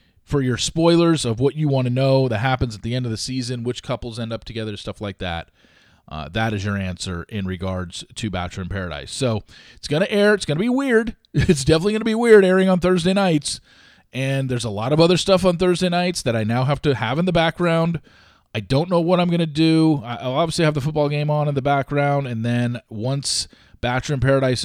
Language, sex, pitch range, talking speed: English, male, 105-140 Hz, 240 wpm